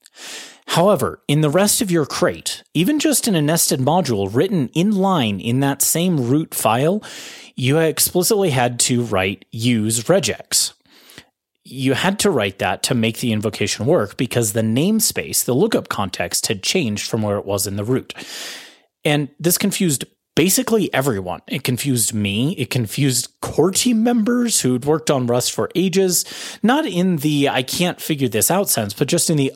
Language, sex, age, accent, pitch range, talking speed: English, male, 30-49, American, 110-160 Hz, 165 wpm